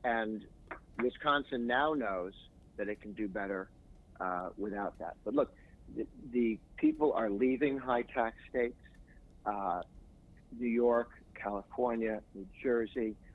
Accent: American